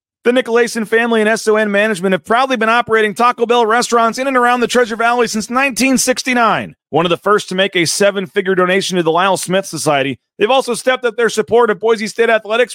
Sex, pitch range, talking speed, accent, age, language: male, 180-240 Hz, 210 wpm, American, 30-49, English